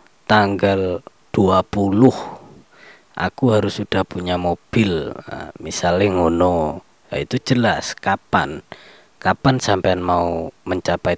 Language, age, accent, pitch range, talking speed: Indonesian, 20-39, native, 90-110 Hz, 95 wpm